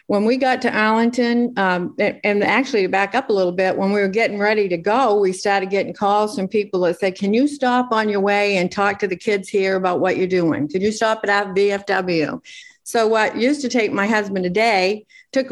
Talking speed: 230 wpm